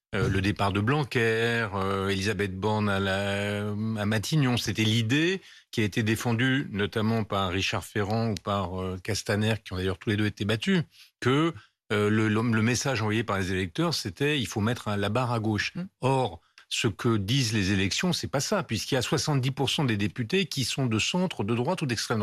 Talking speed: 210 wpm